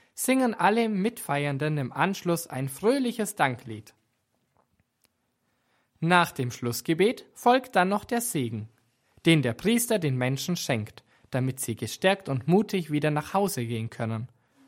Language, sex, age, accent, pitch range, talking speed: German, male, 20-39, German, 120-180 Hz, 130 wpm